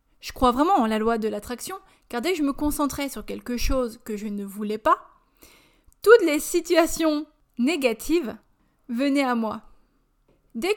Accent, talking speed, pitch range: French, 165 wpm, 230-295 Hz